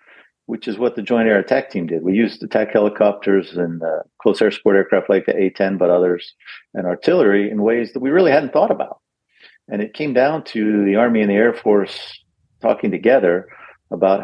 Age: 50-69